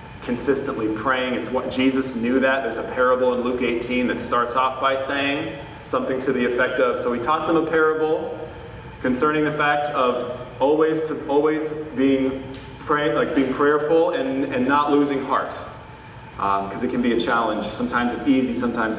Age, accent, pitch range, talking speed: 30-49, American, 120-145 Hz, 180 wpm